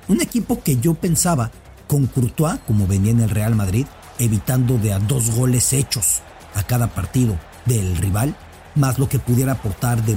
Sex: male